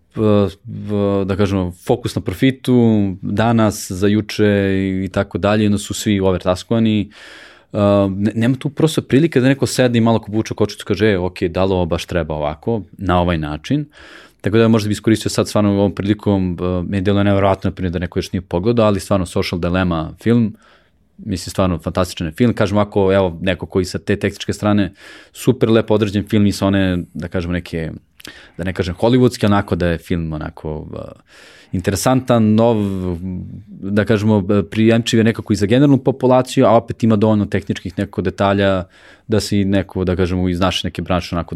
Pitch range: 90-110 Hz